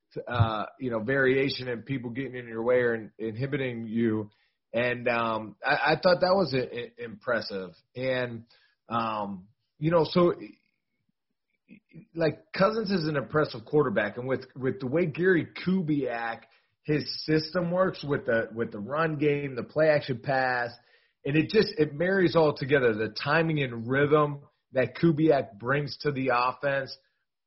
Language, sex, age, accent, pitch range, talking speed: English, male, 30-49, American, 120-160 Hz, 155 wpm